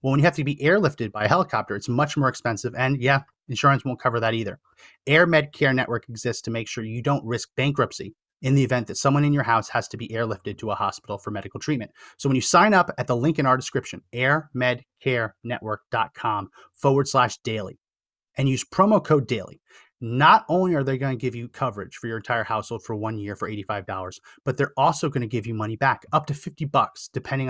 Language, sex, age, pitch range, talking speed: English, male, 30-49, 115-150 Hz, 225 wpm